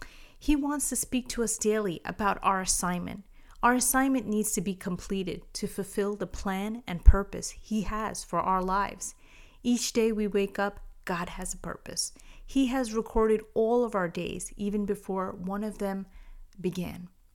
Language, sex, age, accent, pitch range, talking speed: English, female, 30-49, American, 180-215 Hz, 170 wpm